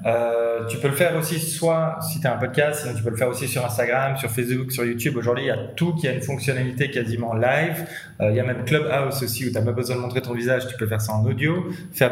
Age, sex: 20-39, male